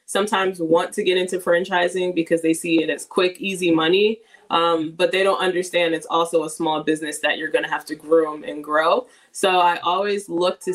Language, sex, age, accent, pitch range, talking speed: English, female, 20-39, American, 165-195 Hz, 210 wpm